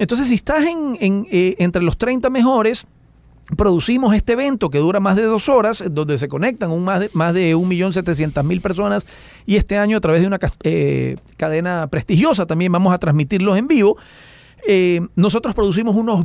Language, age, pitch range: Spanish, 40-59, 155-225 Hz